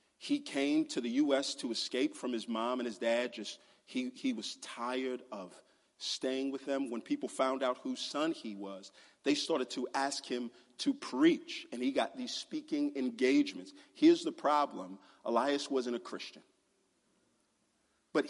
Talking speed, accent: 165 wpm, American